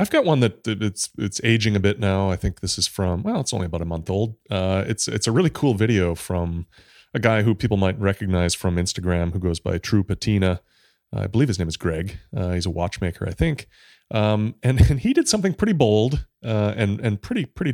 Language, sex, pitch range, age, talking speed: English, male, 90-110 Hz, 30-49, 235 wpm